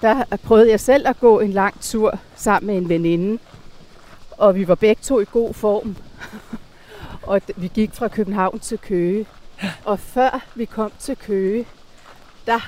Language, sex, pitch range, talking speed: Danish, female, 200-245 Hz, 165 wpm